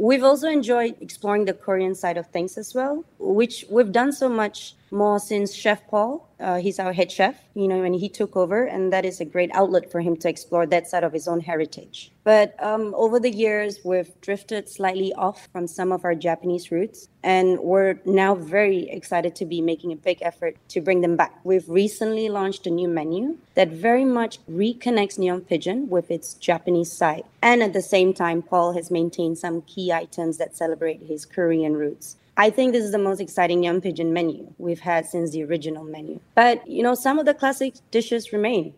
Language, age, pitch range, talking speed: English, 30-49, 175-215 Hz, 205 wpm